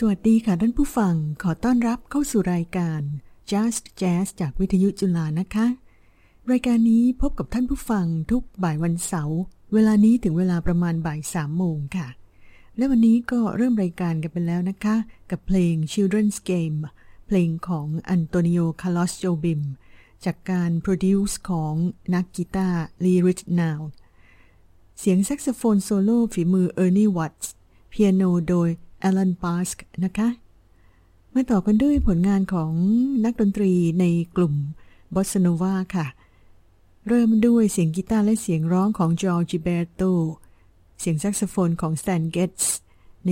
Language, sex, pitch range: Thai, female, 165-200 Hz